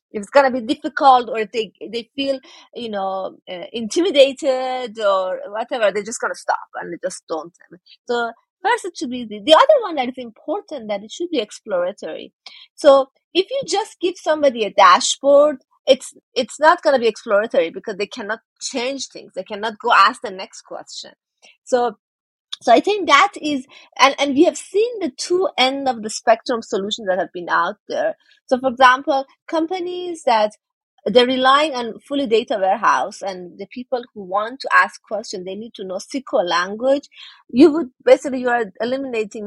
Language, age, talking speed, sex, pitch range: English, 30-49, 180 wpm, female, 215-310 Hz